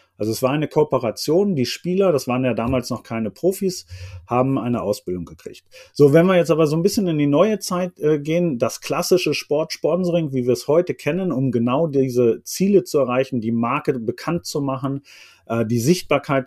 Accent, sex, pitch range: German, male, 120-165 Hz